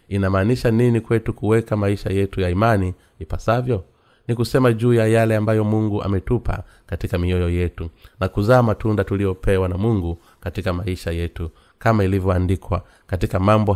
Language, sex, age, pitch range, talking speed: Swahili, male, 30-49, 90-110 Hz, 145 wpm